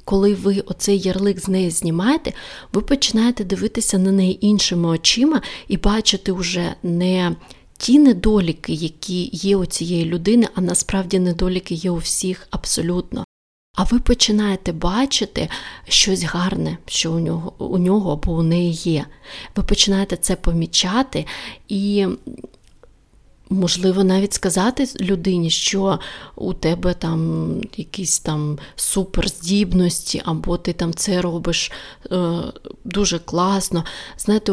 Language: Ukrainian